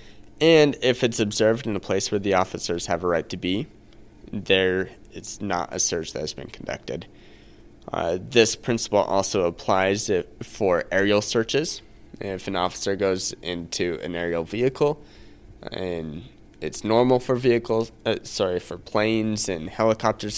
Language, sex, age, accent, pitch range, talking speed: English, male, 20-39, American, 95-115 Hz, 150 wpm